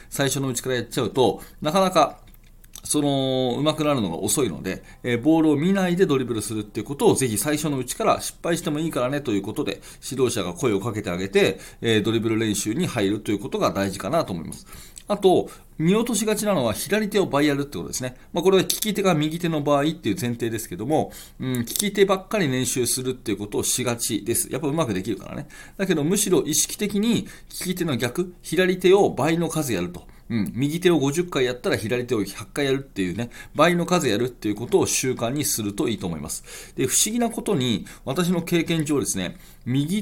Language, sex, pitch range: Japanese, male, 120-180 Hz